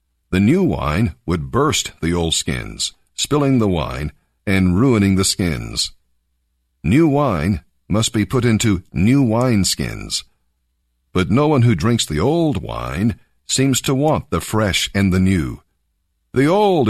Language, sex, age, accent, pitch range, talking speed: English, male, 60-79, American, 75-115 Hz, 150 wpm